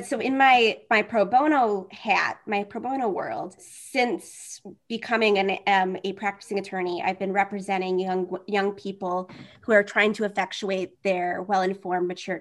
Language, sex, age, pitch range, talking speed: English, female, 20-39, 185-215 Hz, 155 wpm